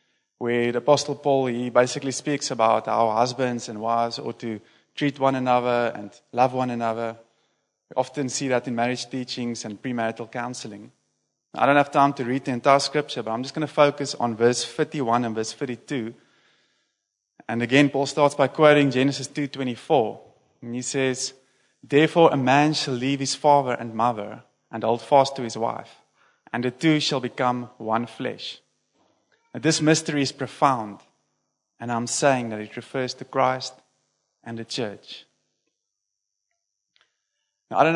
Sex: male